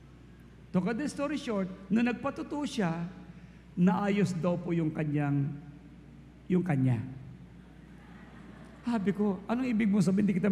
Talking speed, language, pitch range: 130 wpm, English, 170-255 Hz